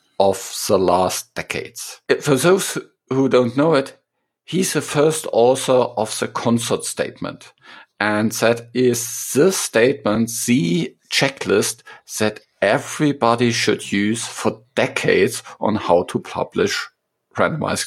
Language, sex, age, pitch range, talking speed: English, male, 50-69, 110-150 Hz, 120 wpm